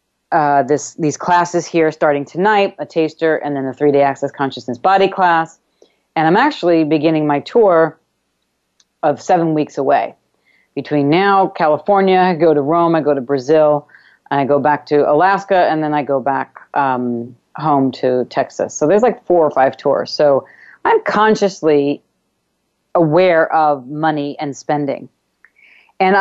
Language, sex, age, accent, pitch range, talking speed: English, female, 40-59, American, 145-180 Hz, 160 wpm